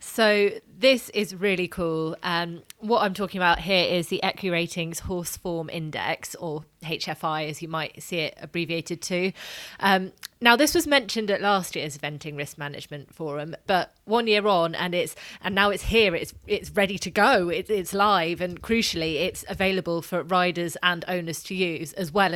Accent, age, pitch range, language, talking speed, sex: British, 20-39, 160-200 Hz, English, 185 wpm, female